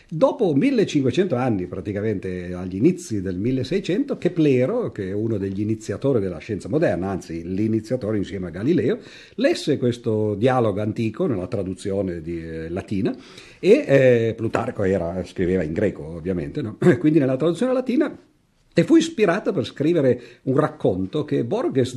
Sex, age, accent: male, 50-69, native